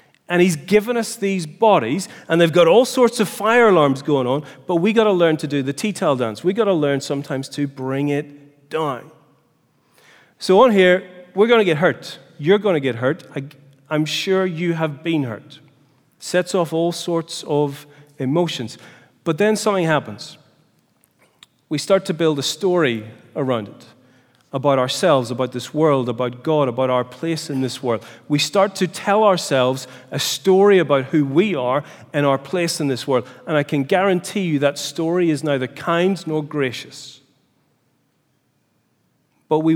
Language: English